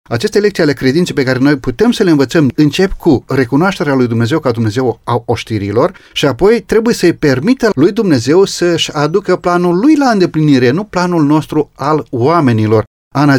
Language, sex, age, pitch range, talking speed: Romanian, male, 40-59, 125-170 Hz, 175 wpm